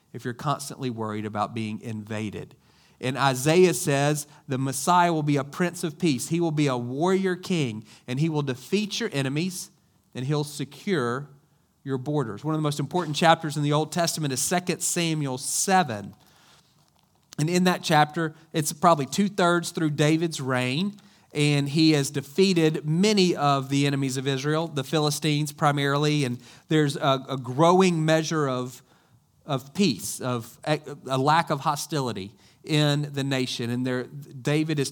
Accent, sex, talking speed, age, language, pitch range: American, male, 160 wpm, 40-59, English, 130-165 Hz